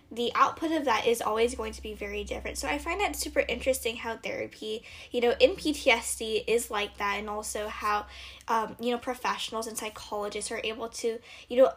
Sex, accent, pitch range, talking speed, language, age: female, American, 220-270 Hz, 205 wpm, English, 10-29